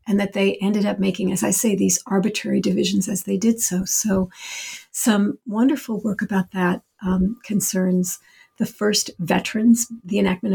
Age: 50-69